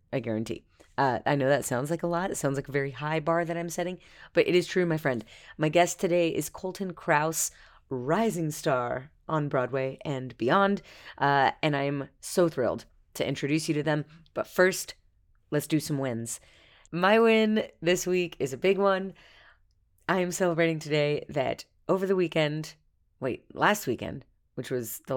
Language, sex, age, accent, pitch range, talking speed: English, female, 30-49, American, 130-175 Hz, 185 wpm